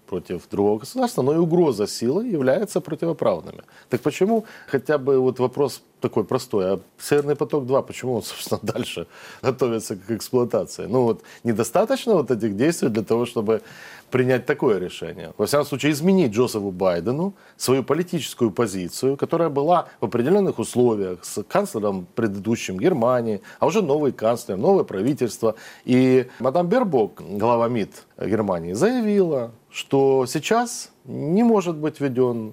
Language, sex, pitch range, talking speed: Russian, male, 115-170 Hz, 140 wpm